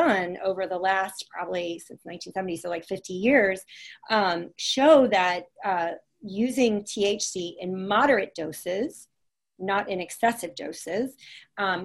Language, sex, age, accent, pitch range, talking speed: English, female, 30-49, American, 190-245 Hz, 120 wpm